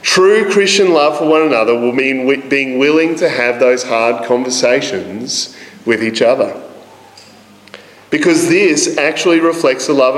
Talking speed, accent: 140 wpm, Australian